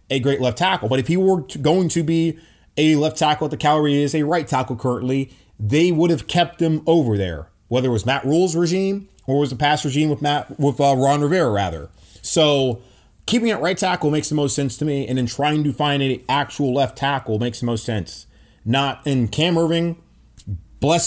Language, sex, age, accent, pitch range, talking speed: English, male, 30-49, American, 120-165 Hz, 215 wpm